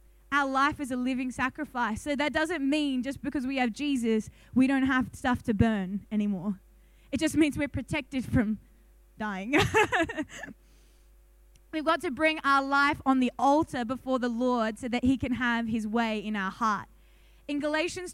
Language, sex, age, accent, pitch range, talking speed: English, female, 20-39, Australian, 235-295 Hz, 175 wpm